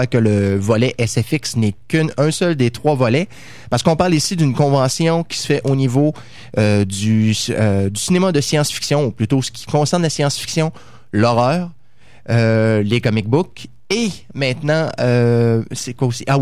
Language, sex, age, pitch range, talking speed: French, male, 20-39, 120-155 Hz, 170 wpm